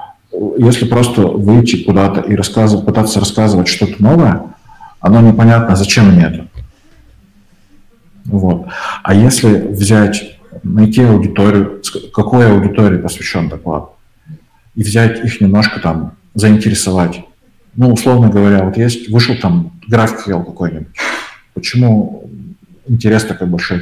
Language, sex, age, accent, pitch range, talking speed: Russian, male, 50-69, native, 95-110 Hz, 105 wpm